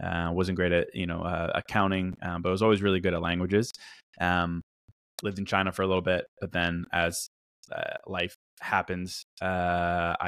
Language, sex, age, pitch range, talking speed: English, male, 20-39, 90-100 Hz, 180 wpm